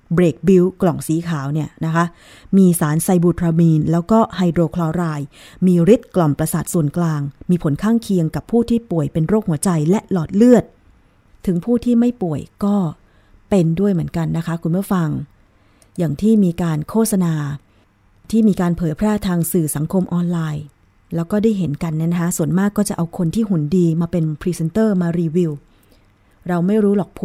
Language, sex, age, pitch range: Thai, female, 20-39, 155-190 Hz